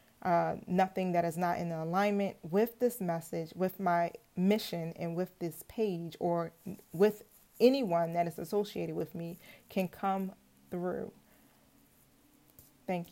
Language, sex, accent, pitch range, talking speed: English, female, American, 170-195 Hz, 135 wpm